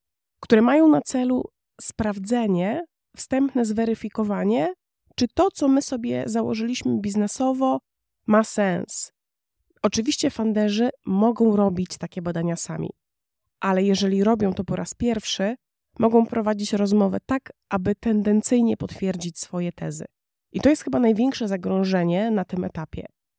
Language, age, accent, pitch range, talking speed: Polish, 20-39, native, 190-240 Hz, 125 wpm